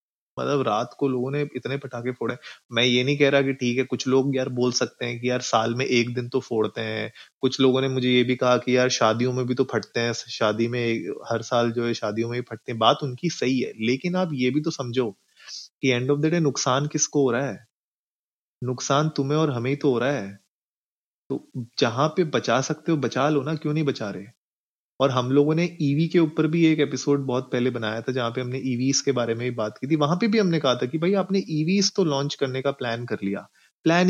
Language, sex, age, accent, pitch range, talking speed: Hindi, male, 20-39, native, 125-145 Hz, 250 wpm